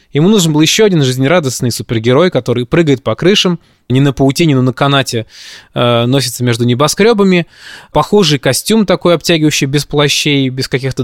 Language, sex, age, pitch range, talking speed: Russian, male, 20-39, 125-155 Hz, 160 wpm